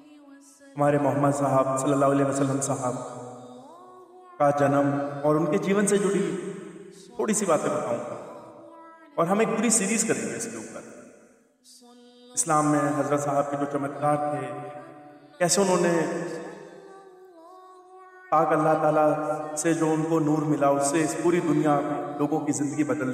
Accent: native